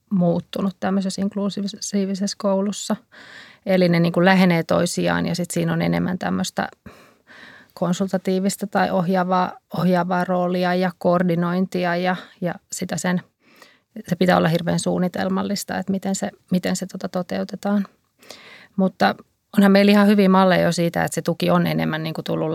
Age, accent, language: 30-49, native, Finnish